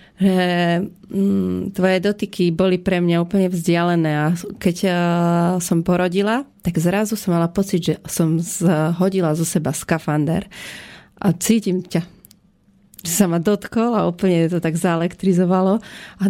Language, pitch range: Slovak, 170-195 Hz